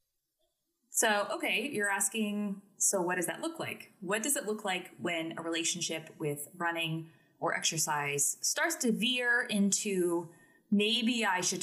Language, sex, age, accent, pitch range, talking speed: English, female, 20-39, American, 165-230 Hz, 150 wpm